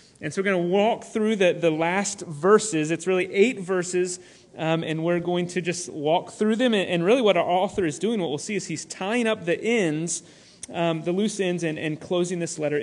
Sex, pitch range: male, 155-200 Hz